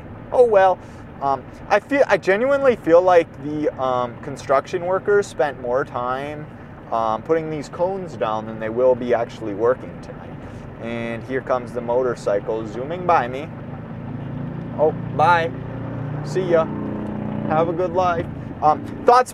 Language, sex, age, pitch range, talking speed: English, male, 30-49, 135-205 Hz, 145 wpm